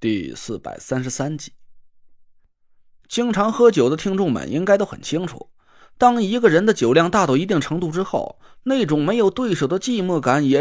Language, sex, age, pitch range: Chinese, male, 20-39, 135-215 Hz